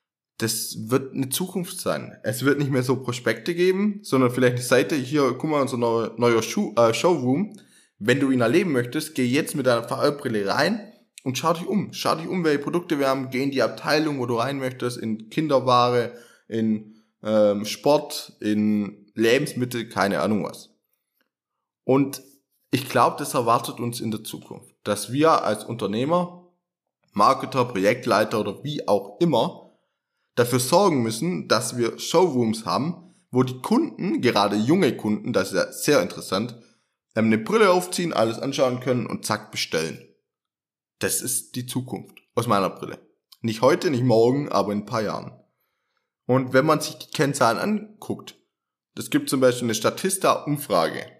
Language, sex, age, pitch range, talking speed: German, male, 20-39, 115-160 Hz, 165 wpm